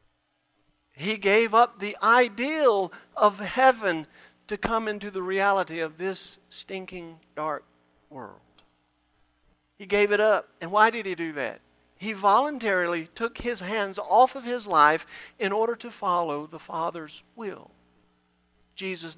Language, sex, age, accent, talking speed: English, male, 50-69, American, 140 wpm